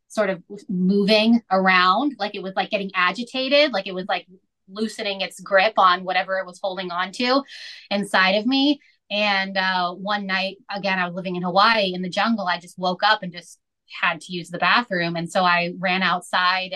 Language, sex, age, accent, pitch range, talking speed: English, female, 20-39, American, 180-205 Hz, 200 wpm